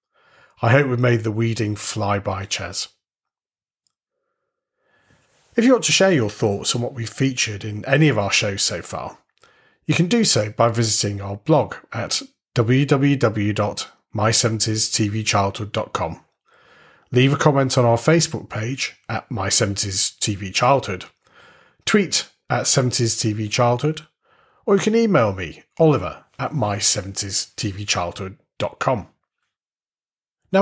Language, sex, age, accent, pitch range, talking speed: English, male, 30-49, British, 105-155 Hz, 125 wpm